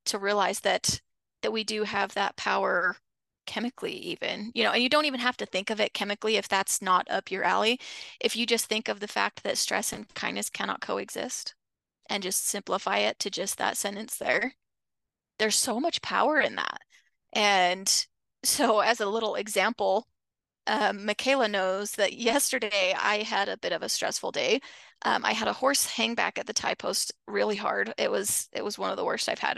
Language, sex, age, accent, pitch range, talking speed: English, female, 20-39, American, 200-245 Hz, 200 wpm